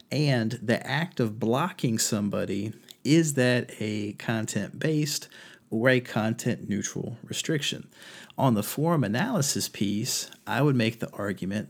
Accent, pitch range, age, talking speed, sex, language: American, 105-130 Hz, 40-59, 125 wpm, male, English